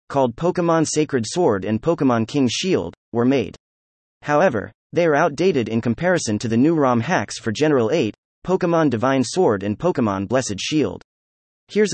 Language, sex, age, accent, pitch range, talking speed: English, male, 30-49, American, 105-160 Hz, 160 wpm